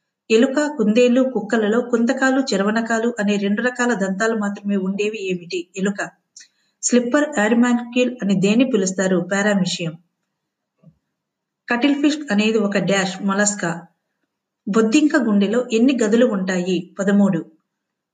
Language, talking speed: Telugu, 100 wpm